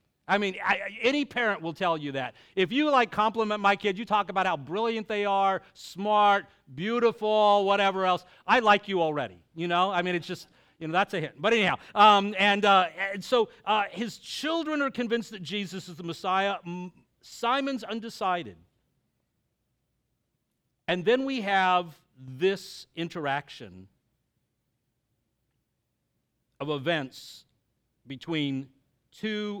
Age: 50-69